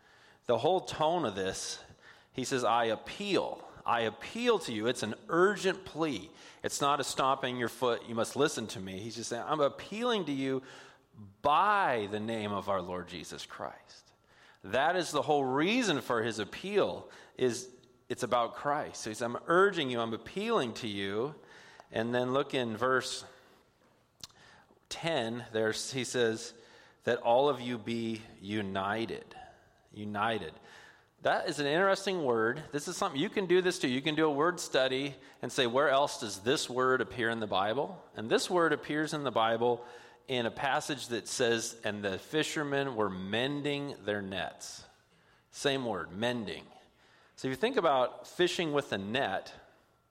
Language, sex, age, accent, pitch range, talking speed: English, male, 30-49, American, 115-145 Hz, 170 wpm